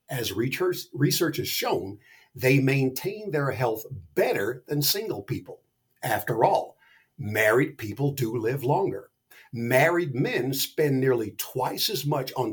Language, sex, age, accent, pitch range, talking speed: English, male, 60-79, American, 130-170 Hz, 130 wpm